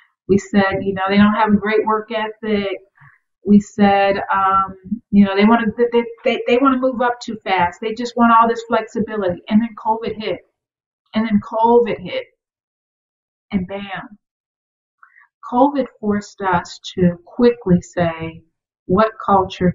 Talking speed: 160 wpm